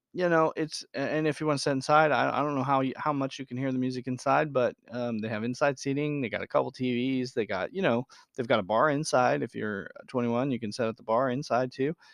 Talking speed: 270 wpm